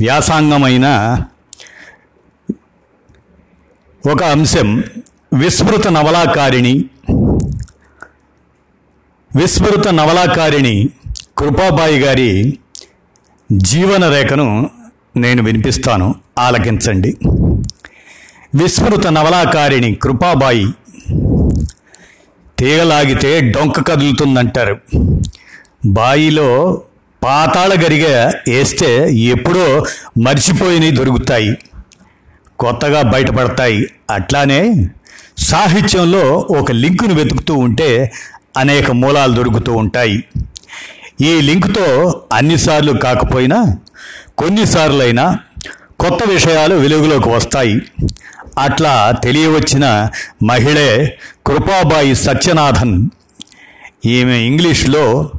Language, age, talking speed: Telugu, 50-69, 60 wpm